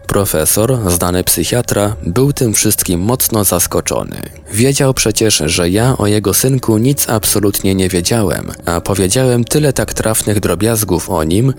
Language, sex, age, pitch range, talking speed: Polish, male, 20-39, 90-115 Hz, 140 wpm